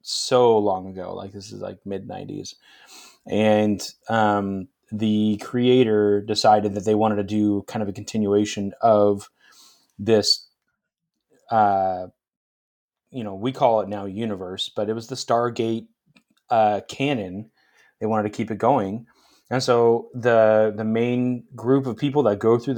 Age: 30-49